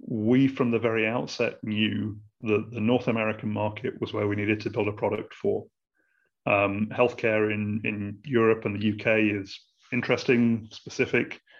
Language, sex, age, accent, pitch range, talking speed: English, male, 30-49, British, 105-120 Hz, 160 wpm